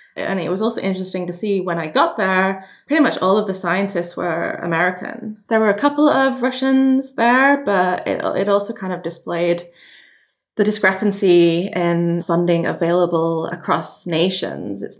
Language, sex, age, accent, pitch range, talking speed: English, female, 20-39, British, 175-210 Hz, 165 wpm